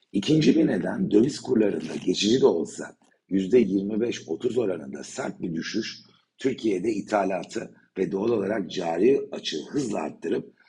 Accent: native